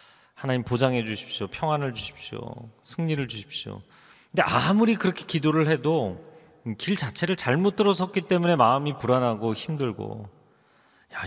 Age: 40-59